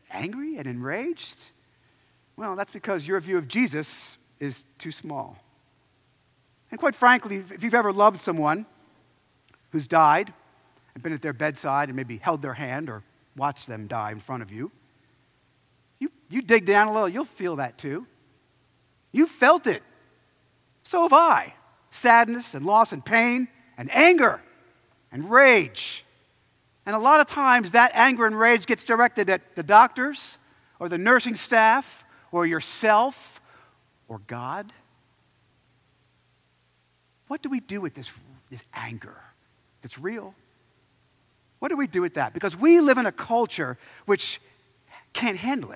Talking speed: 150 wpm